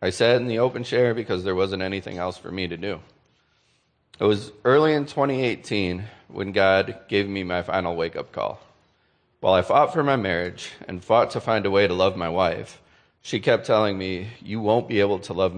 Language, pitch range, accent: English, 95-115 Hz, American